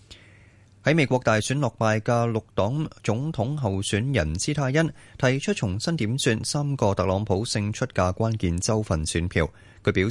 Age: 20-39